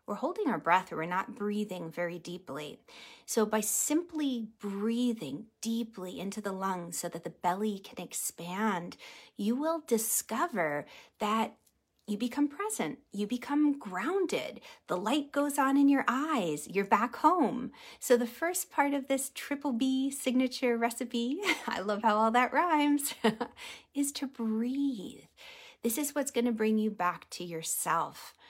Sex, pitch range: female, 190-265 Hz